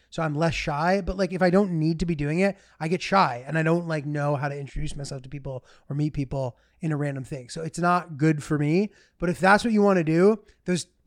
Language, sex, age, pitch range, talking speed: English, male, 20-39, 150-195 Hz, 270 wpm